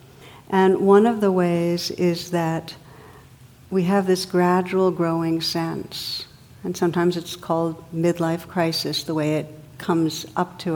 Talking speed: 140 wpm